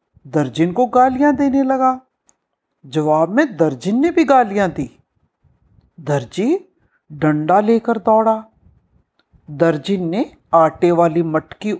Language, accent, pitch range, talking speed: Hindi, native, 170-275 Hz, 105 wpm